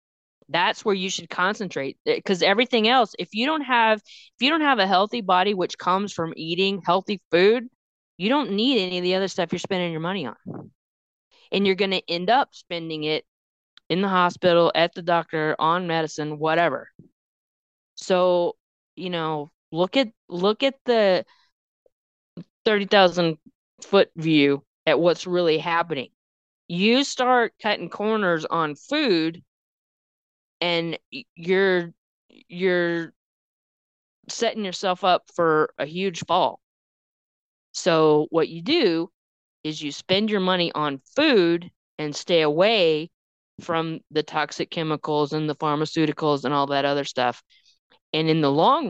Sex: female